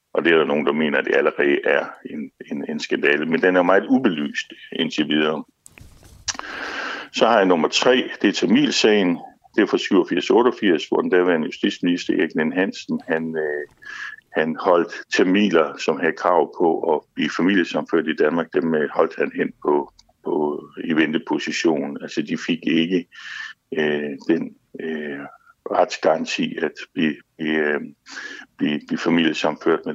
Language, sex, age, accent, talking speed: Danish, male, 60-79, native, 155 wpm